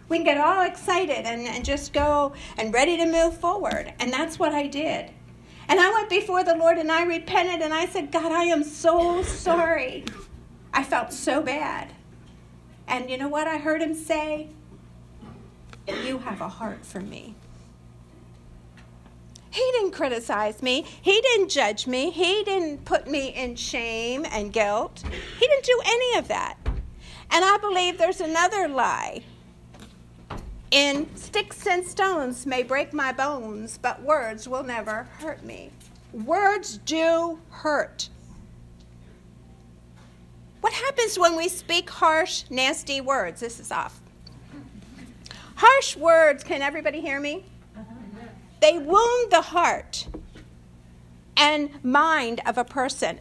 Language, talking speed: English, 140 wpm